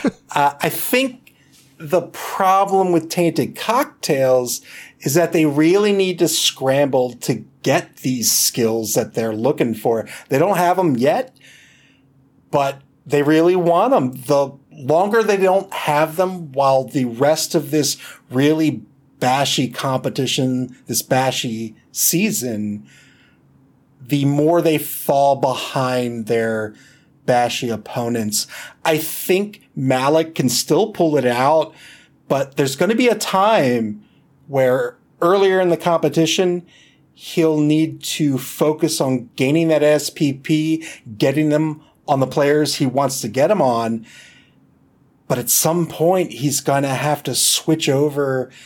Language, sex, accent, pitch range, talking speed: English, male, American, 130-160 Hz, 135 wpm